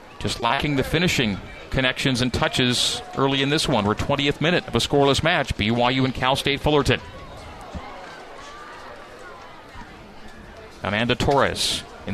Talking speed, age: 130 wpm, 40-59